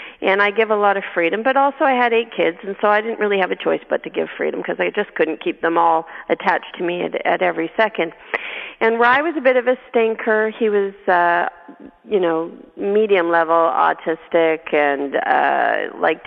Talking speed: 210 wpm